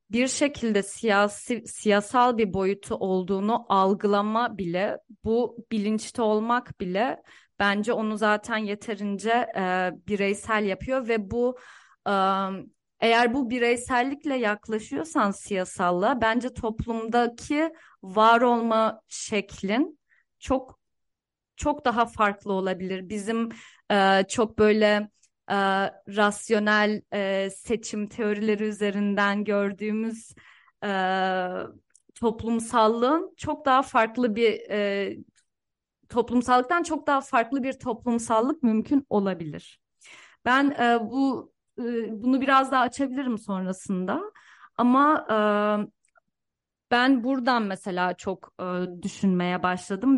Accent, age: native, 30-49